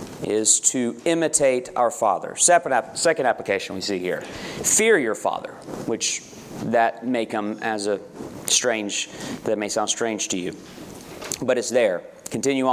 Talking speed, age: 140 wpm, 40-59